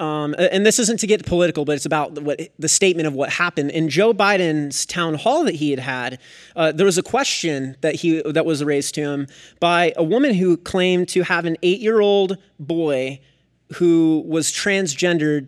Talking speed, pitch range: 200 wpm, 150-195 Hz